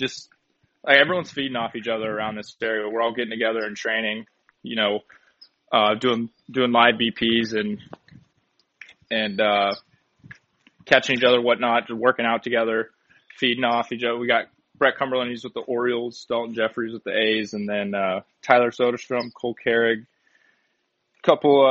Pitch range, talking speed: 115-130 Hz, 175 wpm